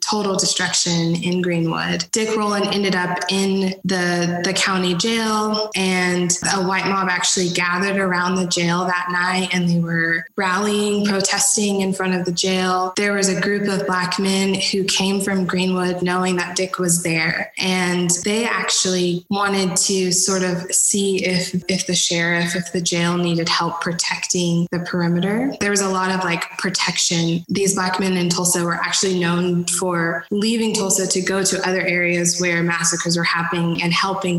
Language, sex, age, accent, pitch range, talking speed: English, female, 20-39, American, 175-195 Hz, 175 wpm